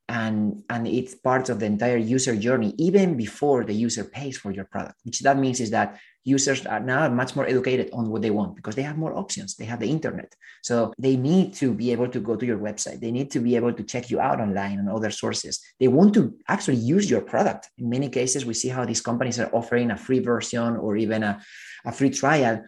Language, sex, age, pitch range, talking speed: English, male, 30-49, 110-135 Hz, 240 wpm